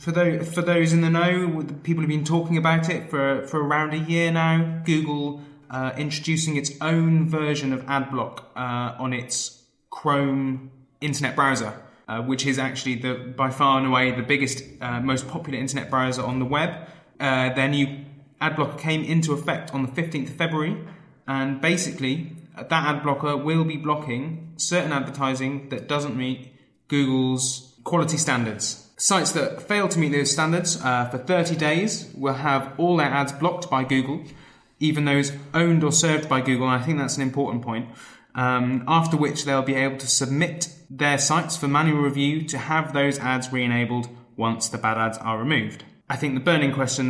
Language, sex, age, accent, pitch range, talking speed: English, male, 20-39, British, 130-155 Hz, 175 wpm